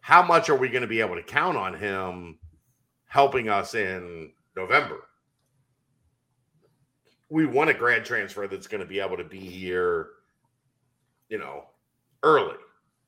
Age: 50-69